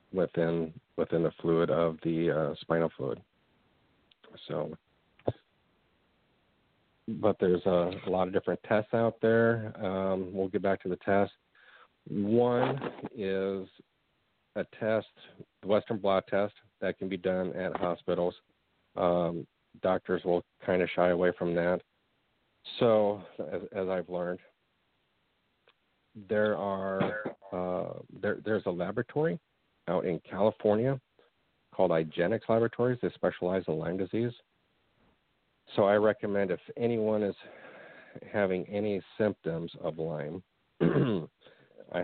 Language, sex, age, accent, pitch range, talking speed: English, male, 50-69, American, 85-100 Hz, 120 wpm